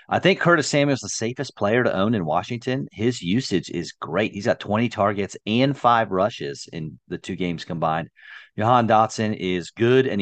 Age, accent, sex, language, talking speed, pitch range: 40-59, American, male, English, 195 wpm, 100-130 Hz